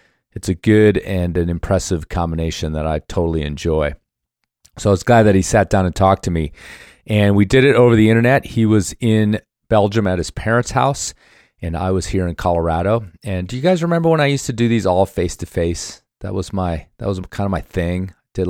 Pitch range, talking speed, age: 85-105 Hz, 210 wpm, 40-59